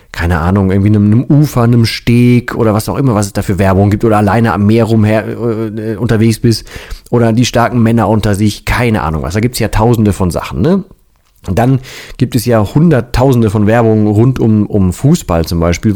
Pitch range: 100-125 Hz